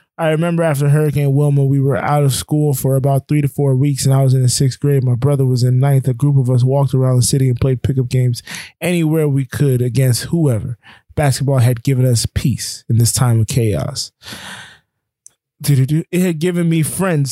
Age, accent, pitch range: 20-39, American, 120-140 Hz